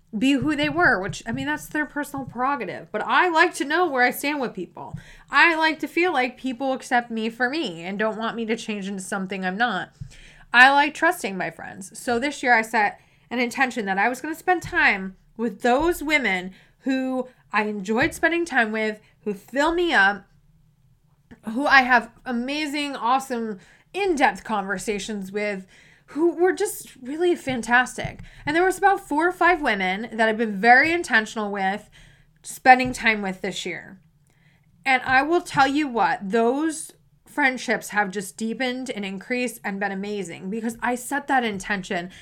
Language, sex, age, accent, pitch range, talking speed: English, female, 20-39, American, 200-280 Hz, 180 wpm